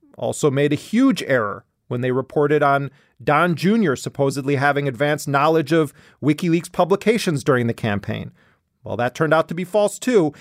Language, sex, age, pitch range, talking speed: English, male, 40-59, 140-180 Hz, 165 wpm